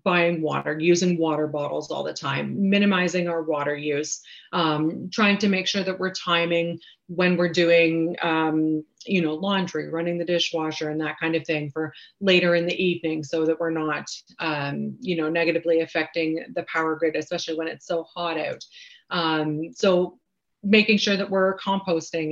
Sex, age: female, 30-49